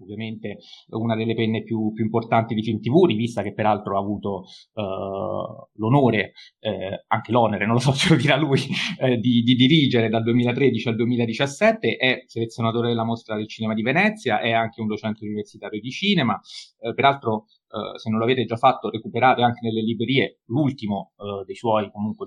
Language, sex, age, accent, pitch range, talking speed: Italian, male, 30-49, native, 110-135 Hz, 180 wpm